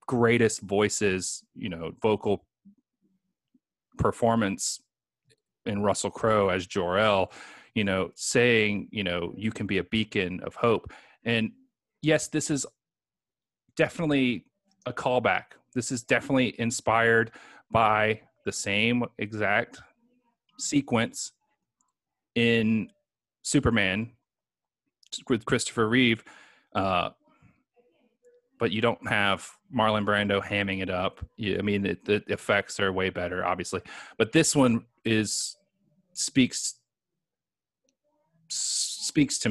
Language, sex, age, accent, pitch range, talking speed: English, male, 30-49, American, 110-155 Hz, 105 wpm